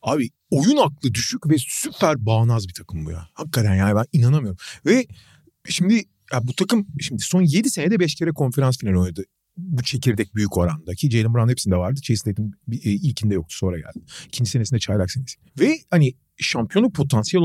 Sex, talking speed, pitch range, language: male, 180 wpm, 115-195 Hz, Turkish